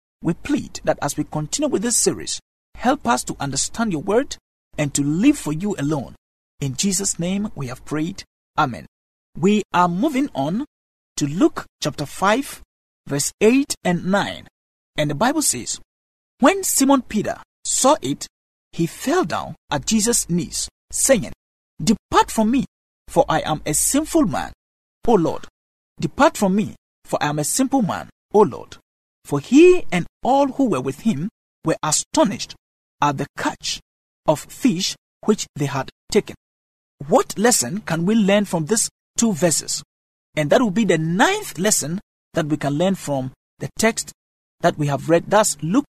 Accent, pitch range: Nigerian, 150-235 Hz